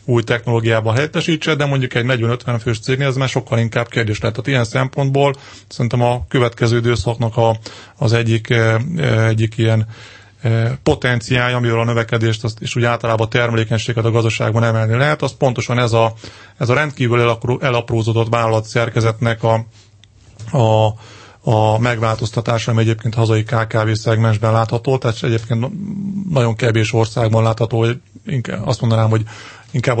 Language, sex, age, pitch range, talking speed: Hungarian, male, 30-49, 115-125 Hz, 140 wpm